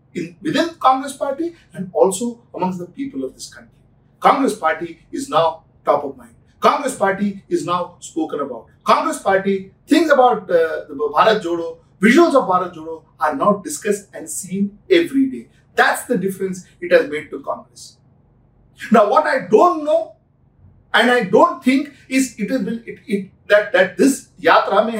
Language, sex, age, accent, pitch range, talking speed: English, male, 50-69, Indian, 195-285 Hz, 175 wpm